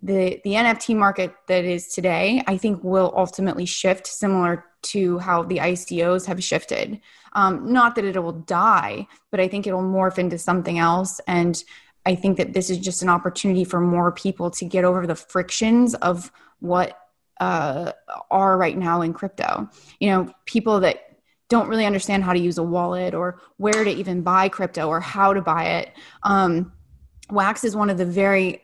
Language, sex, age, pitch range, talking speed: English, female, 20-39, 175-200 Hz, 190 wpm